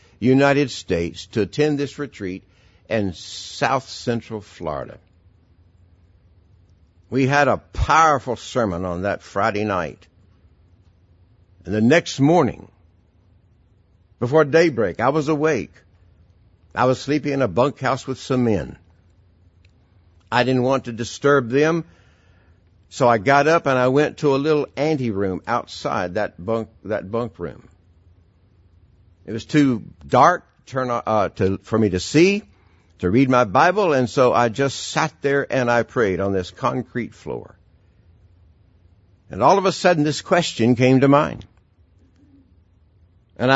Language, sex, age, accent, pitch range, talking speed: English, male, 60-79, American, 90-130 Hz, 135 wpm